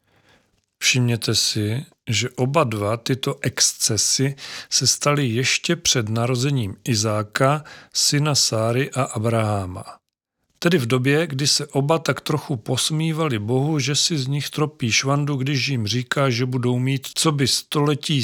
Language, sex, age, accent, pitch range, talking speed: Czech, male, 40-59, native, 120-150 Hz, 140 wpm